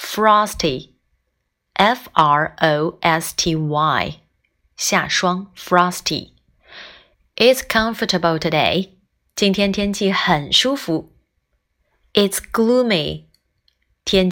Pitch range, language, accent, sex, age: 155-200 Hz, Chinese, native, female, 20-39